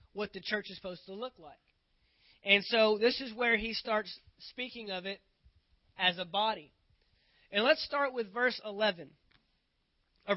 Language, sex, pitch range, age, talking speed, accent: English, male, 195-245 Hz, 20-39, 160 wpm, American